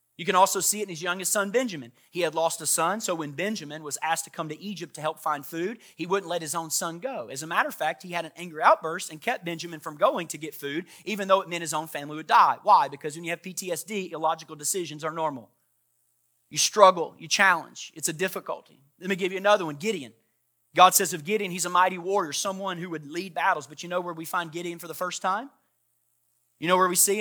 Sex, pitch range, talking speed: male, 155-185 Hz, 255 wpm